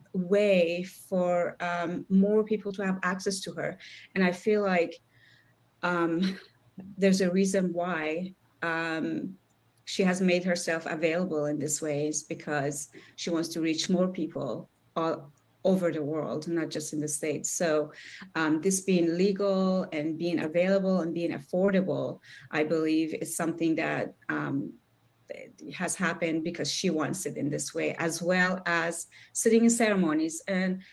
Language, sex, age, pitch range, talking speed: English, female, 30-49, 160-195 Hz, 155 wpm